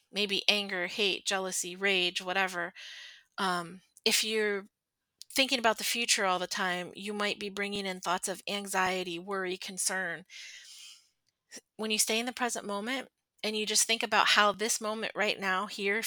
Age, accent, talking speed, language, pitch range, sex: 30-49, American, 165 wpm, English, 195-240 Hz, female